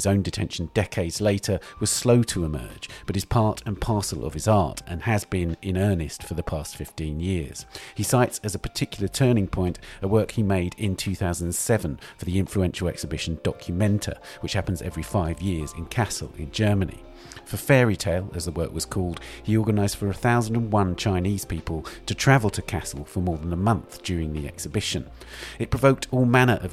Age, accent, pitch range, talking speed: 40-59, British, 85-105 Hz, 190 wpm